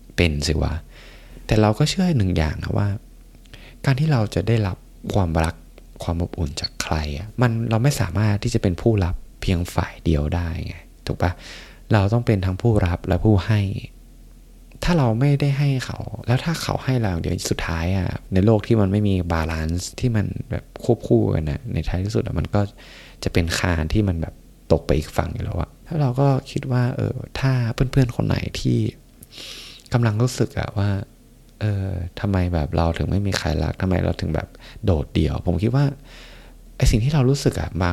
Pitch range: 85-120 Hz